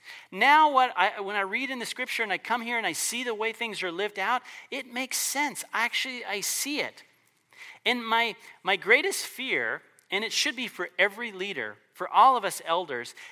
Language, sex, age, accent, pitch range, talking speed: English, male, 40-59, American, 180-255 Hz, 205 wpm